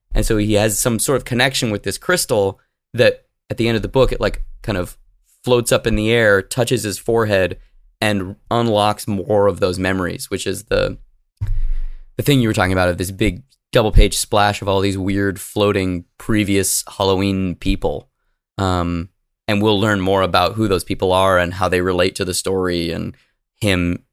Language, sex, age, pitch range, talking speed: English, male, 20-39, 95-120 Hz, 195 wpm